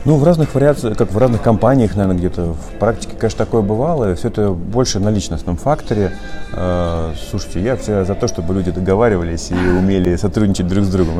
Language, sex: Russian, male